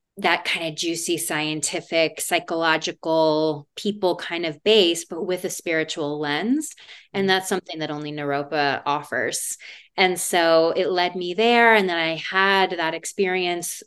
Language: English